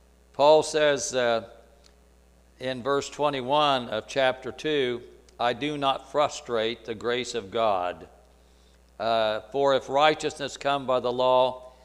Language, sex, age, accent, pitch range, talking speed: English, male, 60-79, American, 90-130 Hz, 125 wpm